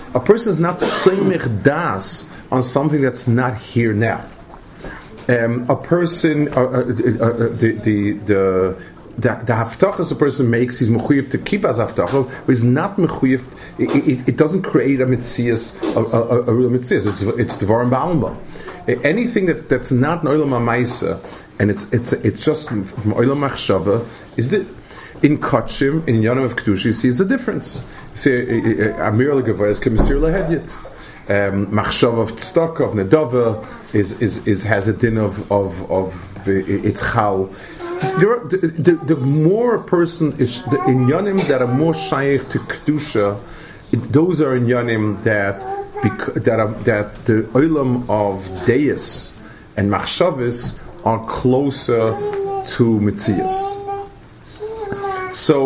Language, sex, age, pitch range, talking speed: English, male, 40-59, 110-150 Hz, 145 wpm